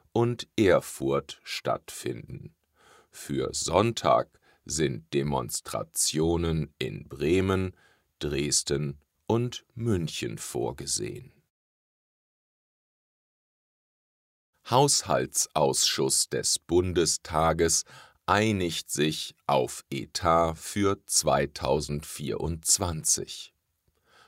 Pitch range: 75-95 Hz